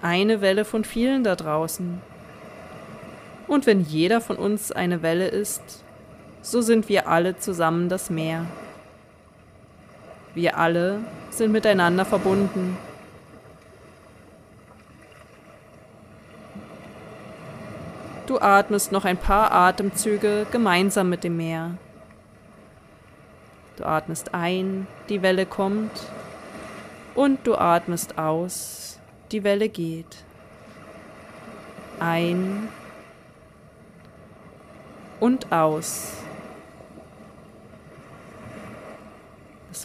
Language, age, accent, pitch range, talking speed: German, 20-39, German, 165-210 Hz, 80 wpm